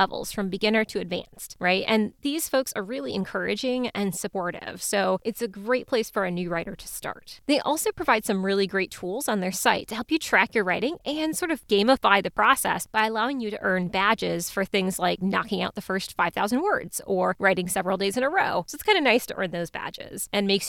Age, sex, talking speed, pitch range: 20-39, female, 230 wpm, 185-250 Hz